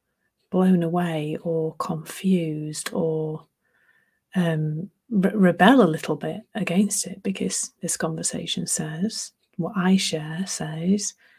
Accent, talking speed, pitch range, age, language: British, 110 wpm, 165-195 Hz, 40-59, English